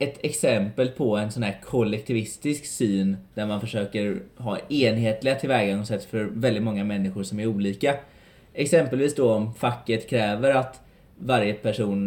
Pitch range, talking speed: 110-150 Hz, 145 wpm